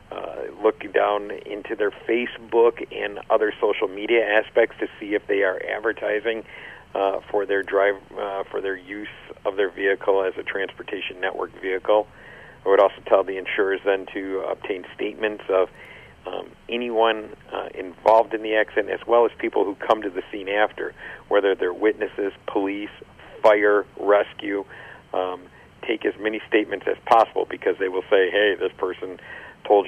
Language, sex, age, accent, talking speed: English, male, 50-69, American, 165 wpm